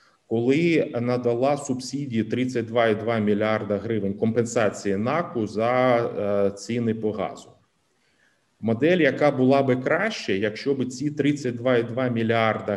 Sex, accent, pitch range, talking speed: male, native, 105-130 Hz, 105 wpm